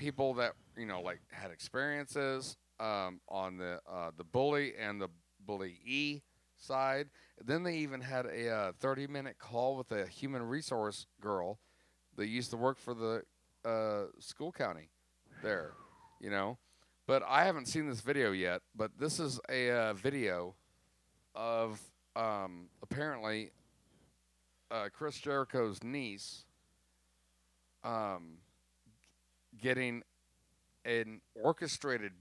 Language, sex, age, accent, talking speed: English, male, 40-59, American, 125 wpm